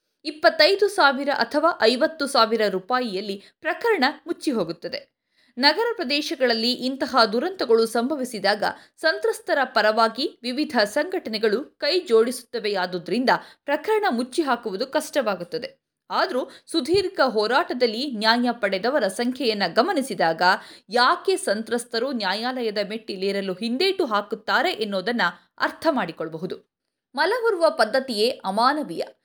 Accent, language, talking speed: native, Kannada, 85 wpm